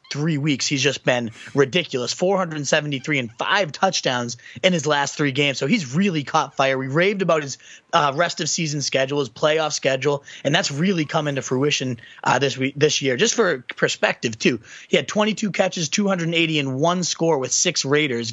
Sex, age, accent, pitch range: male, 30-49, American, 140-175 Hz